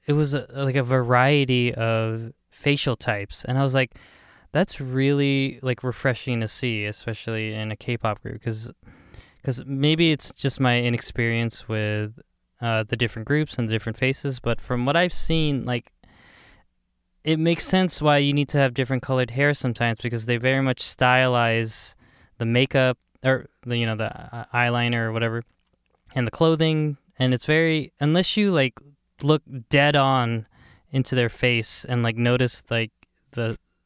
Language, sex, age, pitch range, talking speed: English, male, 20-39, 115-140 Hz, 160 wpm